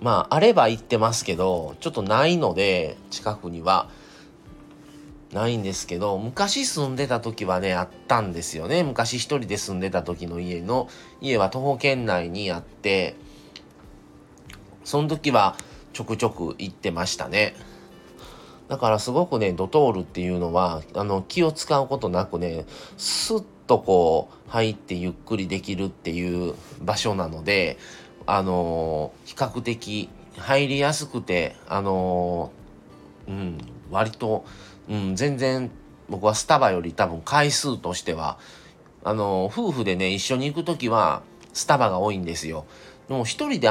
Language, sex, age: Japanese, male, 30-49